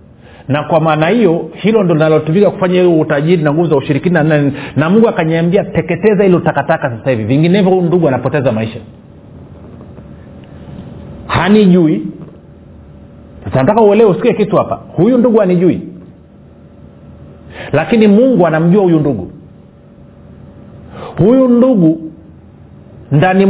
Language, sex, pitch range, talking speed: Swahili, male, 135-190 Hz, 110 wpm